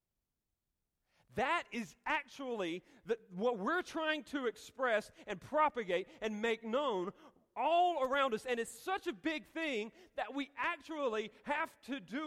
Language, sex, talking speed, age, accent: English, male, 135 wpm, 40-59, American